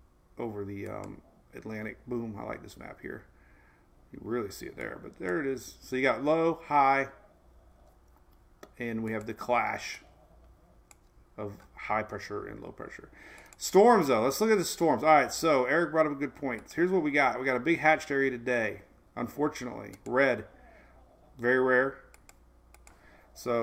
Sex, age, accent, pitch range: male, 40-59, American, 110-145 Hz